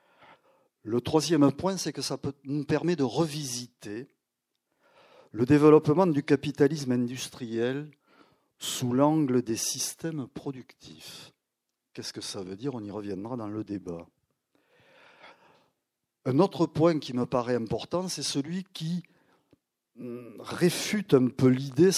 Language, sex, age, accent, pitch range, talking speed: French, male, 50-69, French, 120-155 Hz, 125 wpm